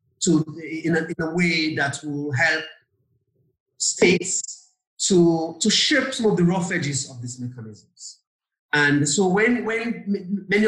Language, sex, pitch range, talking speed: English, male, 150-190 Hz, 145 wpm